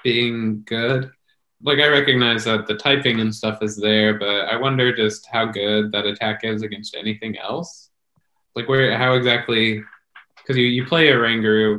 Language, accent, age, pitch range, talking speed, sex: English, American, 20-39, 105-115 Hz, 175 wpm, male